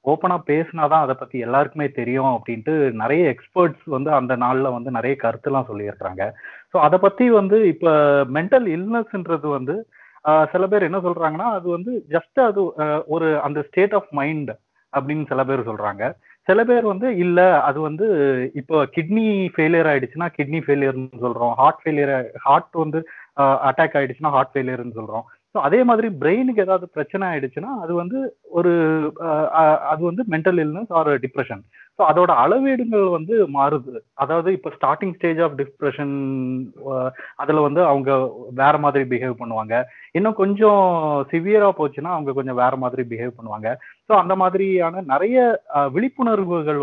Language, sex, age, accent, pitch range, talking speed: Tamil, male, 30-49, native, 135-185 Hz, 115 wpm